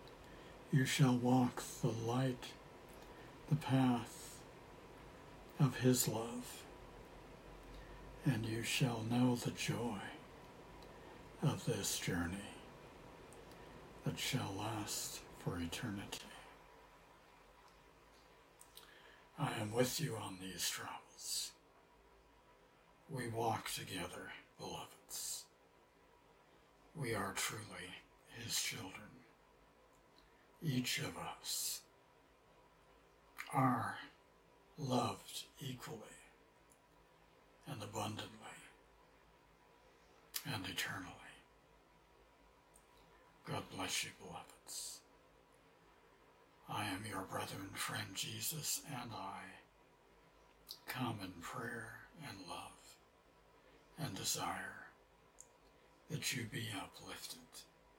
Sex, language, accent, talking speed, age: male, English, American, 75 wpm, 60-79